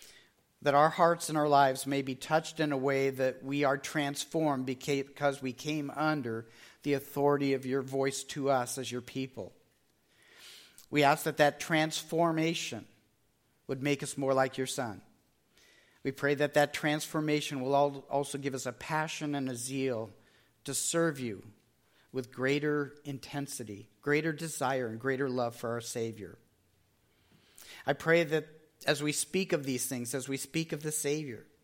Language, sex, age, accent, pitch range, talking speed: English, male, 50-69, American, 125-150 Hz, 160 wpm